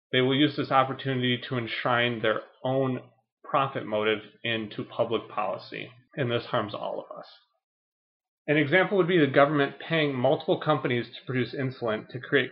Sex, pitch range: male, 115-145 Hz